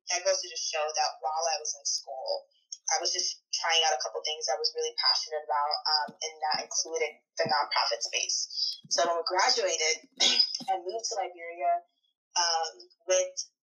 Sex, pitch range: female, 165-245 Hz